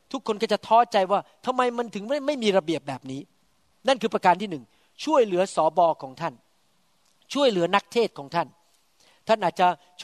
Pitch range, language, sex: 170-225 Hz, Thai, male